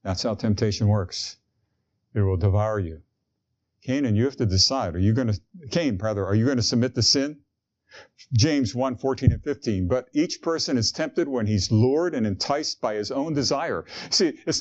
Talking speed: 195 wpm